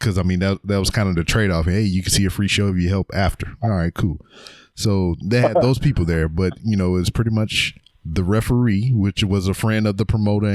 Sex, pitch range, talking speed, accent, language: male, 90-110 Hz, 260 wpm, American, English